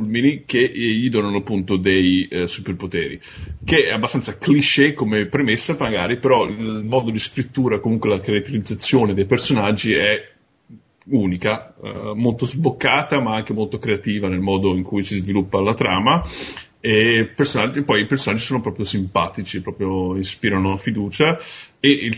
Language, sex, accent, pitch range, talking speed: Italian, male, native, 95-120 Hz, 145 wpm